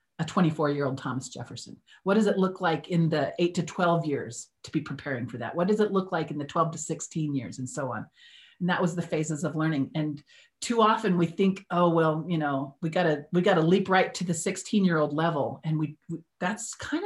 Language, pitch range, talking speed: English, 145-185 Hz, 245 wpm